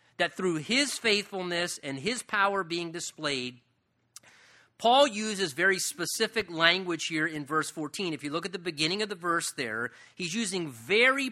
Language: English